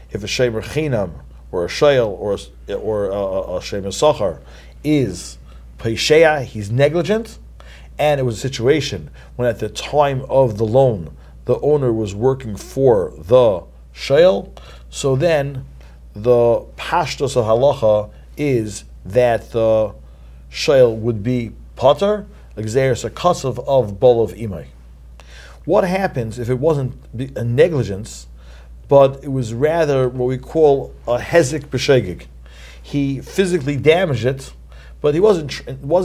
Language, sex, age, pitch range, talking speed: English, male, 50-69, 100-140 Hz, 140 wpm